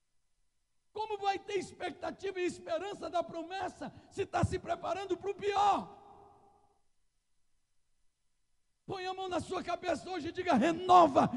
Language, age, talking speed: Portuguese, 60-79, 130 wpm